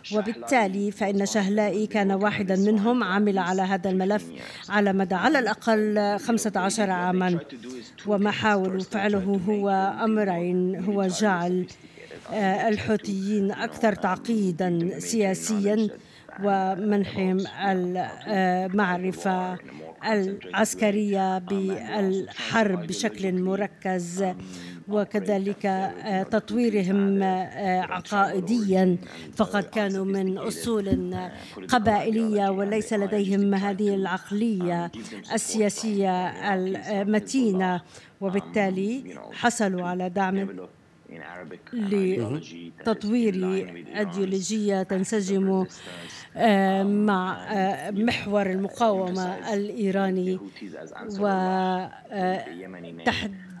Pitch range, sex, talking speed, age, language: 185-210 Hz, female, 65 wpm, 50-69, Arabic